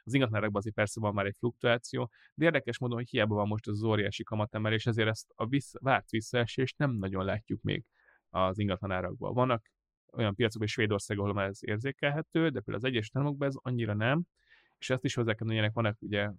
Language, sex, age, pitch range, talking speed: Hungarian, male, 30-49, 105-125 Hz, 200 wpm